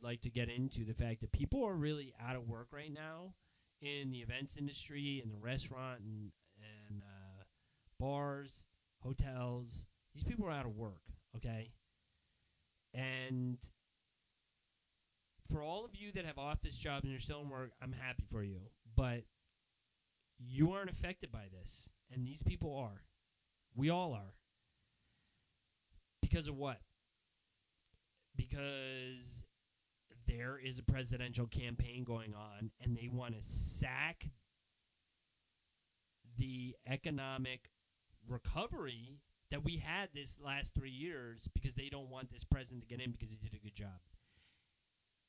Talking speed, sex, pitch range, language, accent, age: 140 wpm, male, 105-135 Hz, English, American, 30-49